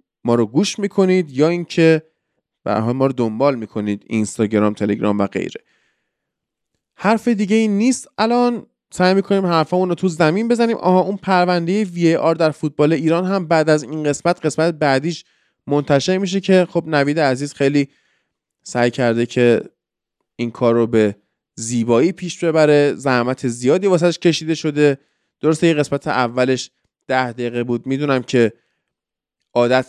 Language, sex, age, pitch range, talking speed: Persian, male, 20-39, 130-180 Hz, 145 wpm